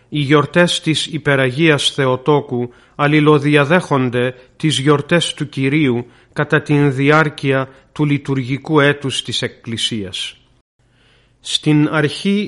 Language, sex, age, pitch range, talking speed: Greek, male, 40-59, 130-155 Hz, 95 wpm